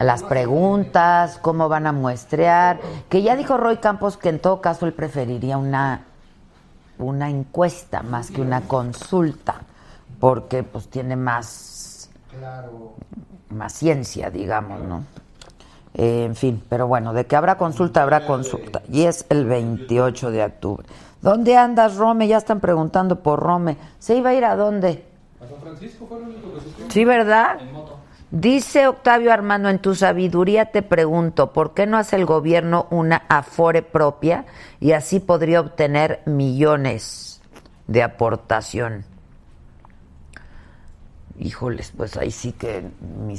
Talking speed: 145 wpm